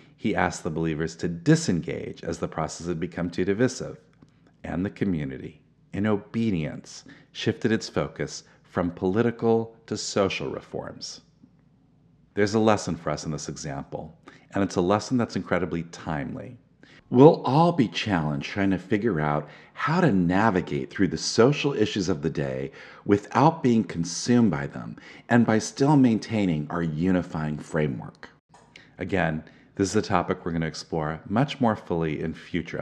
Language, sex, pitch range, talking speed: English, male, 85-115 Hz, 155 wpm